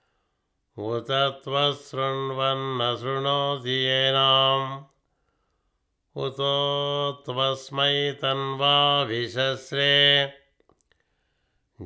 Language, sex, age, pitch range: Telugu, male, 60-79, 130-135 Hz